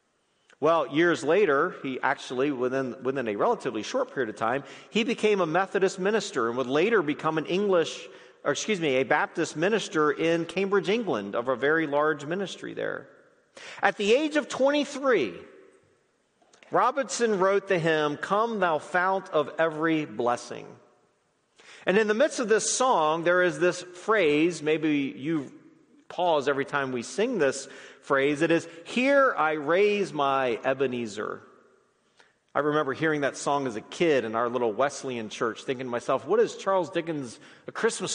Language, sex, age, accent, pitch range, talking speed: English, male, 40-59, American, 145-230 Hz, 160 wpm